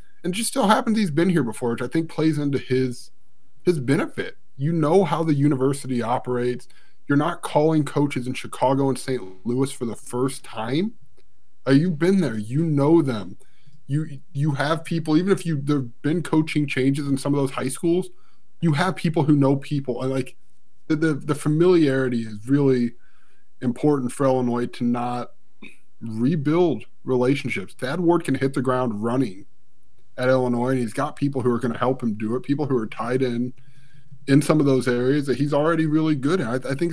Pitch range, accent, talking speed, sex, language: 125-150 Hz, American, 195 wpm, male, English